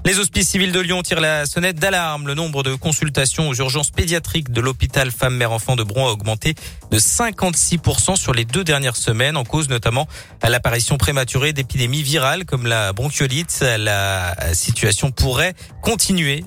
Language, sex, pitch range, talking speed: French, male, 105-145 Hz, 165 wpm